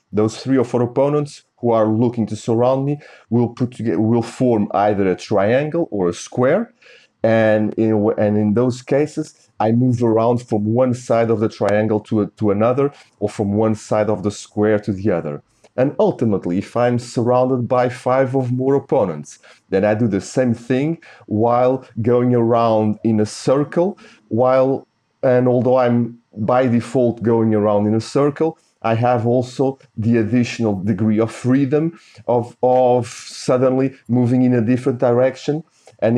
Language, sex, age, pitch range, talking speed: English, male, 40-59, 105-125 Hz, 170 wpm